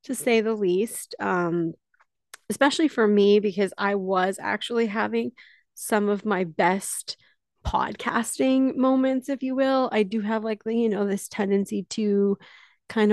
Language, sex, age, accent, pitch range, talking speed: English, female, 30-49, American, 195-250 Hz, 145 wpm